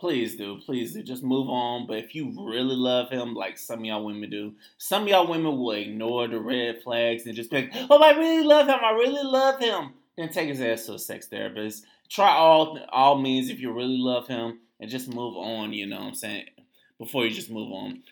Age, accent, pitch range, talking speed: 20-39, American, 120-185 Hz, 240 wpm